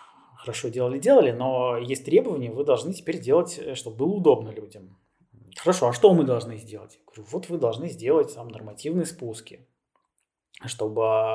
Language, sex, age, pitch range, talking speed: Russian, male, 20-39, 115-170 Hz, 155 wpm